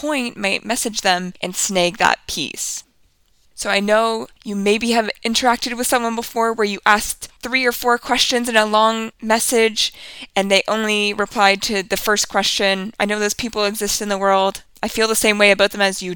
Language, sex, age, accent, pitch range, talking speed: English, female, 20-39, American, 195-240 Hz, 200 wpm